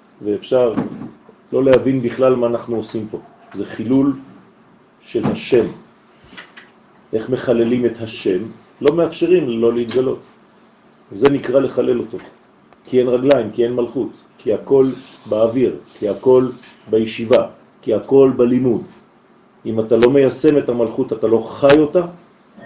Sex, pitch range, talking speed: male, 115-140 Hz, 115 wpm